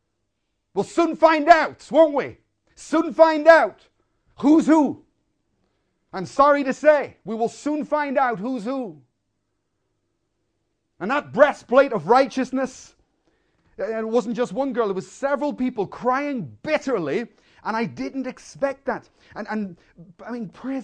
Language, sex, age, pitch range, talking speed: English, male, 40-59, 205-295 Hz, 140 wpm